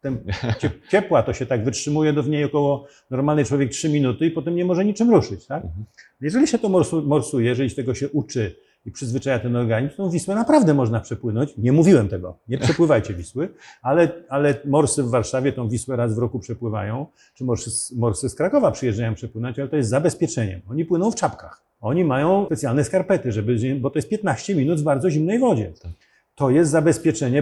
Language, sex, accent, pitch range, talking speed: Polish, male, native, 125-170 Hz, 190 wpm